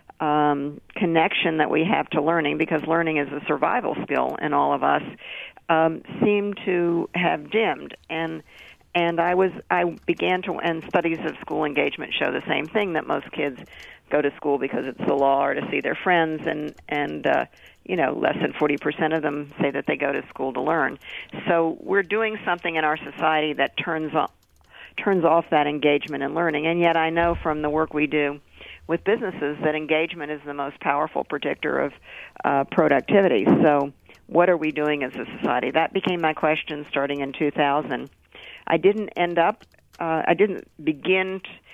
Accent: American